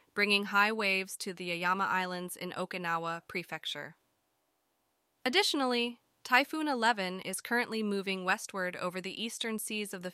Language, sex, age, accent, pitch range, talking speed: English, female, 20-39, American, 185-235 Hz, 135 wpm